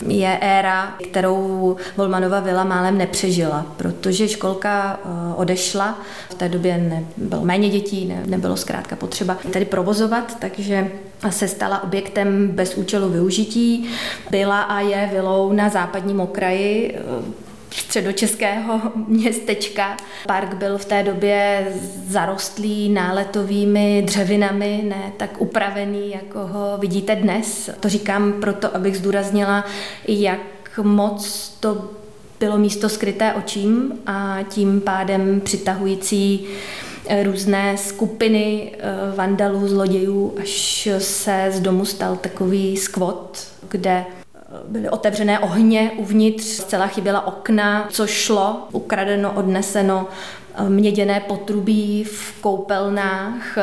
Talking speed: 105 wpm